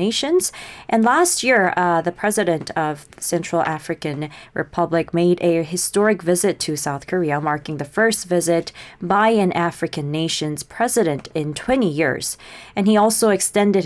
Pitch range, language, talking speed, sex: 150-200 Hz, English, 150 wpm, female